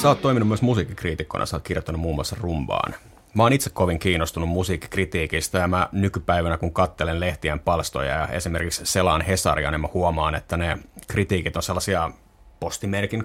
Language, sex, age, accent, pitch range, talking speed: Finnish, male, 30-49, native, 85-100 Hz, 170 wpm